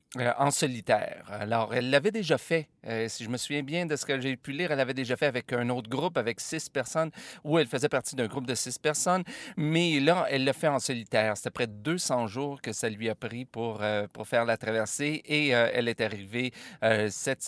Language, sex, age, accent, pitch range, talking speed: French, male, 40-59, Canadian, 110-140 Hz, 240 wpm